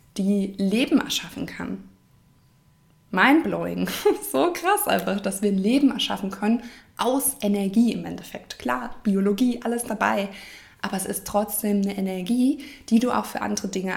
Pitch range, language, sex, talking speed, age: 200-275 Hz, German, female, 145 wpm, 20-39